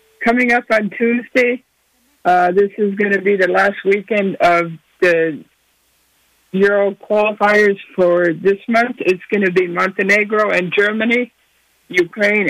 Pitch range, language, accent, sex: 195-225 Hz, English, American, male